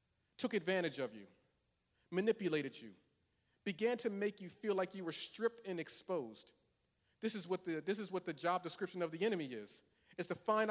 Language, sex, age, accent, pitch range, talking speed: English, male, 40-59, American, 145-185 Hz, 190 wpm